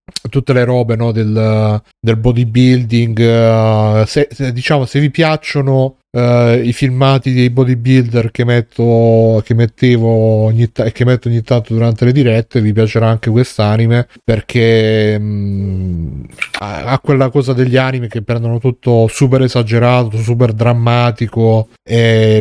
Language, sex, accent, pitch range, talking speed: Italian, male, native, 115-130 Hz, 135 wpm